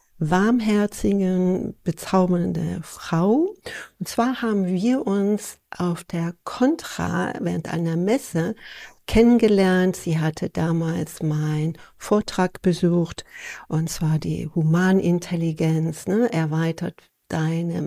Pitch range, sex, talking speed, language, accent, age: 165-220 Hz, female, 95 wpm, German, German, 60-79